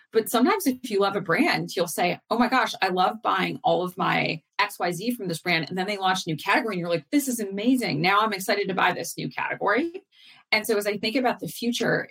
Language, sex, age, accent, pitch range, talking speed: English, female, 30-49, American, 170-230 Hz, 255 wpm